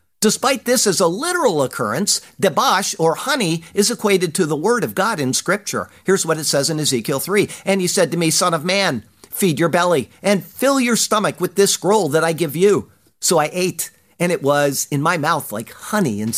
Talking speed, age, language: 215 wpm, 50-69, English